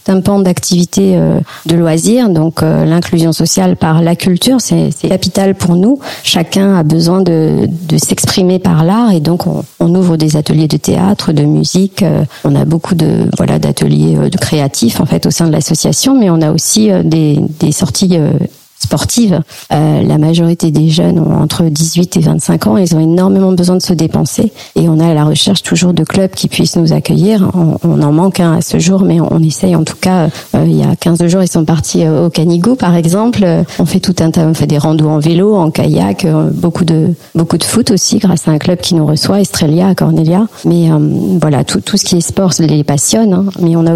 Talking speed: 230 wpm